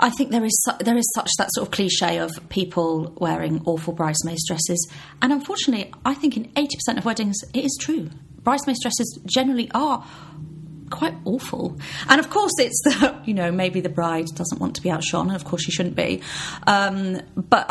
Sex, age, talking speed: female, 30-49, 190 wpm